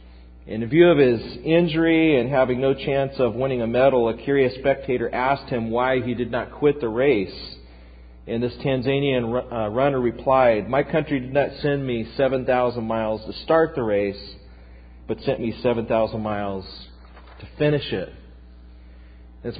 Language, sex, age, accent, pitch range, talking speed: English, male, 40-59, American, 100-145 Hz, 155 wpm